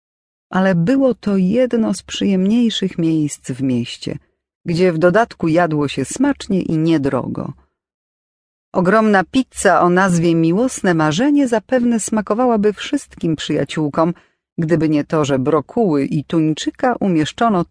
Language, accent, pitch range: Polish, native, 150-225 Hz